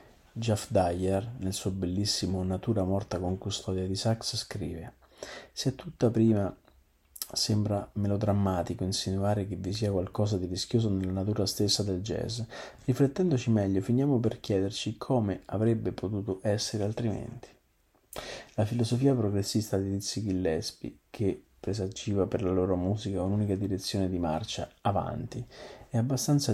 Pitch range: 95-115 Hz